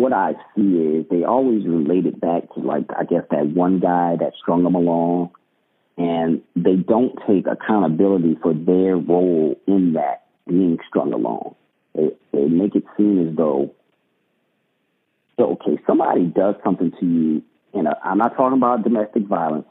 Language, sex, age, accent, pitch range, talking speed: English, male, 40-59, American, 85-105 Hz, 160 wpm